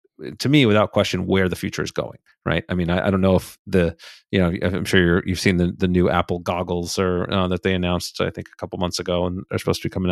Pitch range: 90-100 Hz